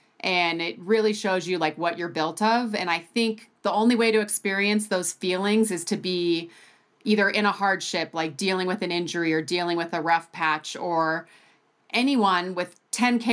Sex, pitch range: female, 175-215 Hz